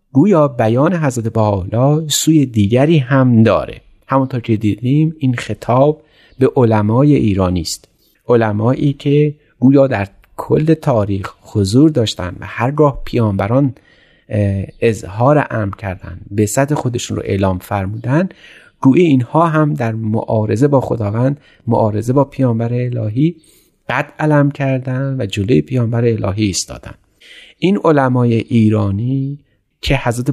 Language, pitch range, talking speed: Persian, 105-140 Hz, 125 wpm